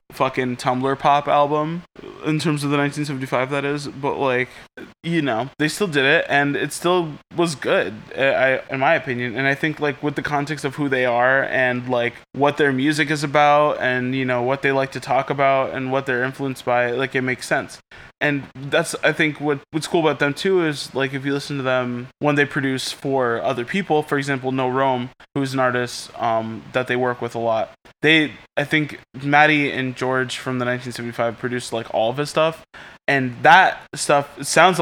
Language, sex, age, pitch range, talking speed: English, male, 20-39, 125-145 Hz, 205 wpm